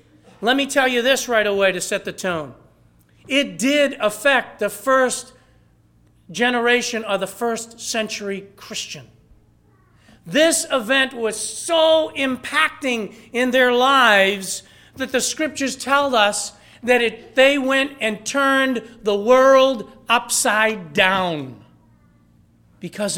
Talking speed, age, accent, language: 120 wpm, 50-69, American, English